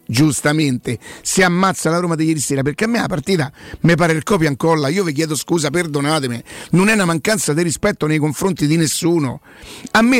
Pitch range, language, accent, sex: 150-190 Hz, Italian, native, male